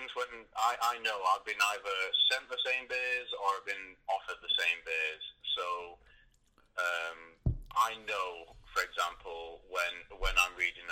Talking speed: 155 wpm